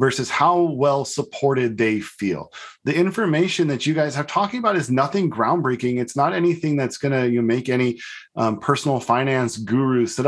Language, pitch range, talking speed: English, 120-155 Hz, 165 wpm